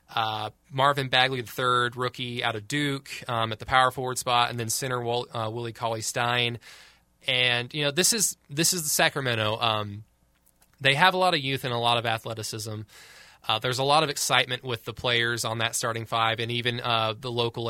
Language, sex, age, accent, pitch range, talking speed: English, male, 20-39, American, 115-140 Hz, 205 wpm